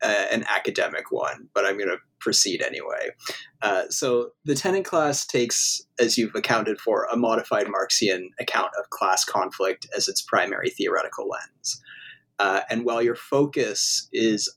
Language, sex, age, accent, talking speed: English, male, 30-49, American, 150 wpm